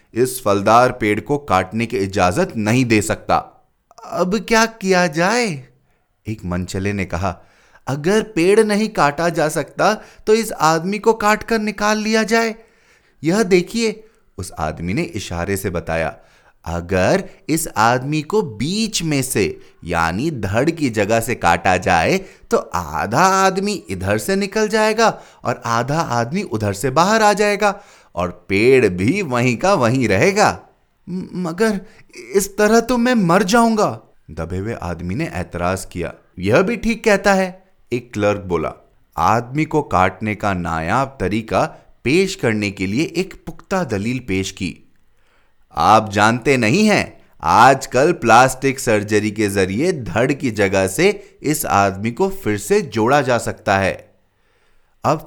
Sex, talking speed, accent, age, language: male, 145 wpm, native, 30-49, Hindi